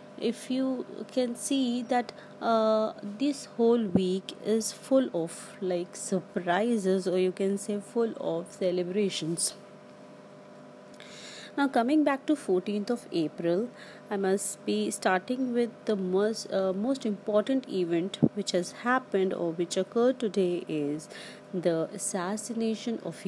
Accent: Indian